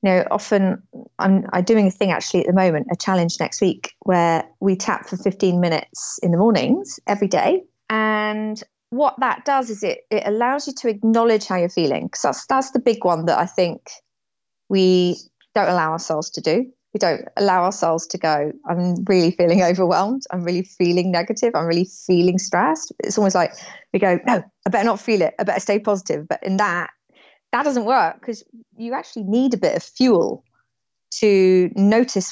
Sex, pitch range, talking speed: female, 180-225 Hz, 190 wpm